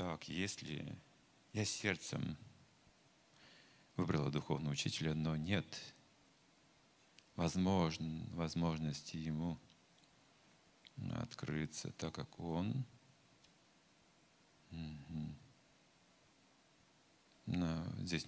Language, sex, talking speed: Russian, male, 55 wpm